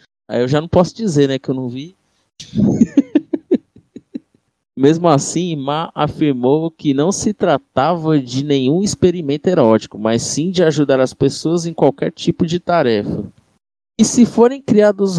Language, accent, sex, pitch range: Portuguese, Brazilian, male, 140-180 Hz